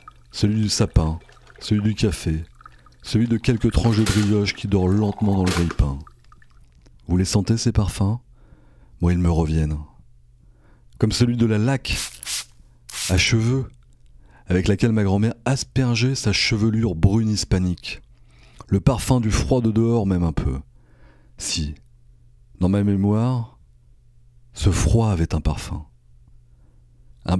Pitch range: 75-115 Hz